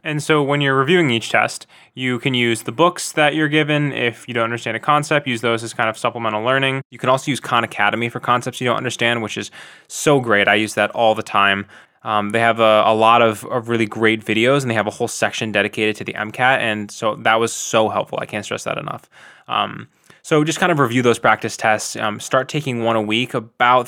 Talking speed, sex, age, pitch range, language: 245 wpm, male, 20-39, 110-130 Hz, English